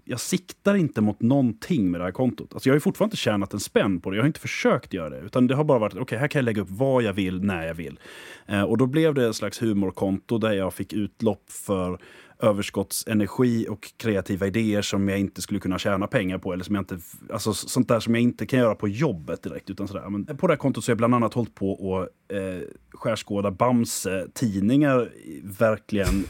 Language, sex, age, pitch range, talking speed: Swedish, male, 30-49, 100-125 Hz, 235 wpm